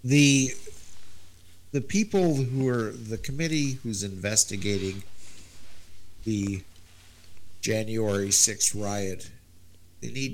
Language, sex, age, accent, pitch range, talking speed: English, male, 50-69, American, 90-115 Hz, 85 wpm